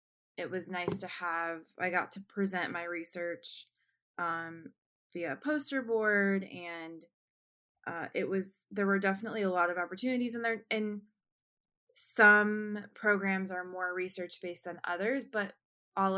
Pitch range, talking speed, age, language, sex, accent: 170-200 Hz, 145 wpm, 20-39, English, female, American